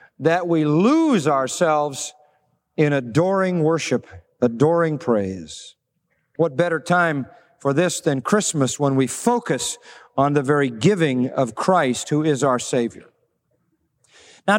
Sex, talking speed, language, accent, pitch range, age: male, 125 wpm, English, American, 155-225 Hz, 40-59